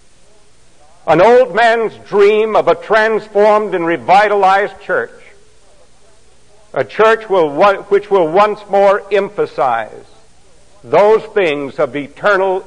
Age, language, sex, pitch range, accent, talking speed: 60-79, English, male, 180-220 Hz, American, 100 wpm